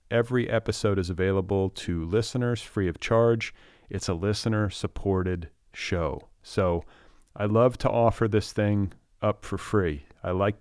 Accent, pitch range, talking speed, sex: American, 90-110 Hz, 145 wpm, male